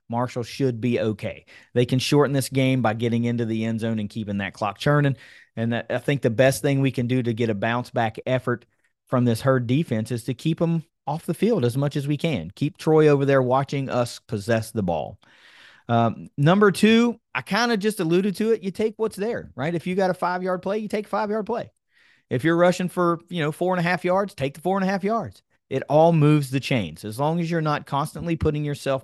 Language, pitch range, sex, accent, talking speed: English, 120-180 Hz, male, American, 245 wpm